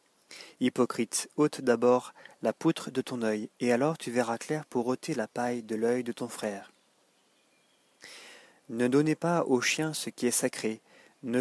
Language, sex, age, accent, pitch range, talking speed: French, male, 40-59, French, 120-150 Hz, 170 wpm